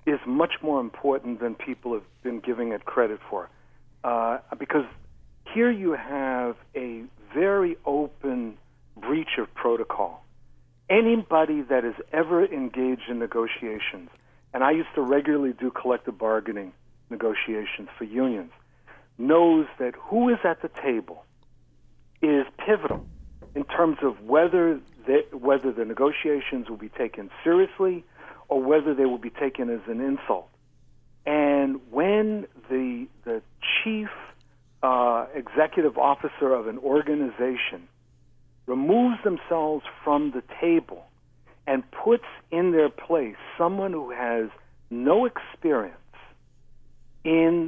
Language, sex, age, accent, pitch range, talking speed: English, male, 60-79, American, 115-160 Hz, 120 wpm